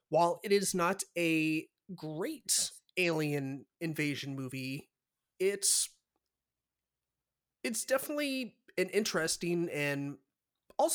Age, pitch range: 30-49, 135-175 Hz